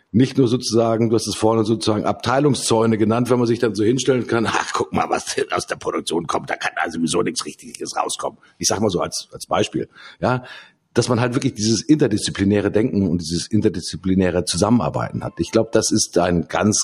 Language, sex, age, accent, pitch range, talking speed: German, male, 50-69, German, 95-120 Hz, 210 wpm